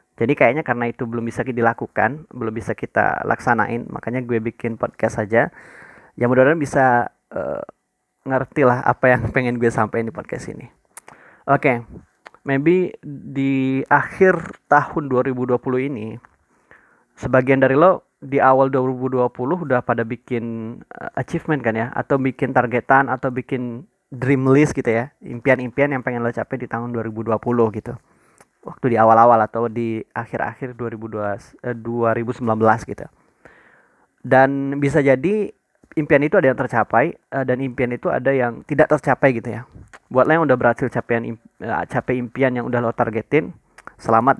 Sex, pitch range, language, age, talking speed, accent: male, 115-135 Hz, Indonesian, 20-39, 145 wpm, native